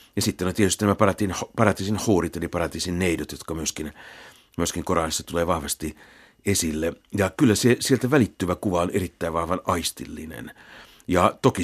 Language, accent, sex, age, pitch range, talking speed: Finnish, native, male, 60-79, 85-100 Hz, 150 wpm